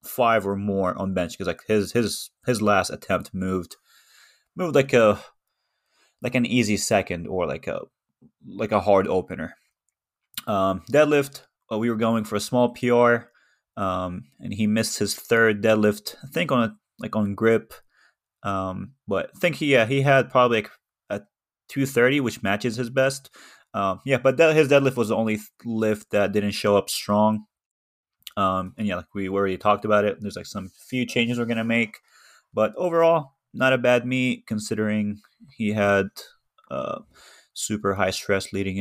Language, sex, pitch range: English, male, 100-125 Hz